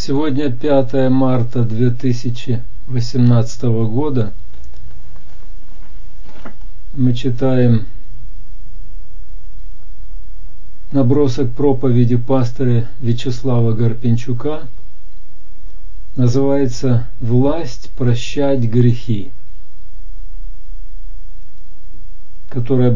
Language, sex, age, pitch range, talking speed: Russian, male, 50-69, 95-125 Hz, 45 wpm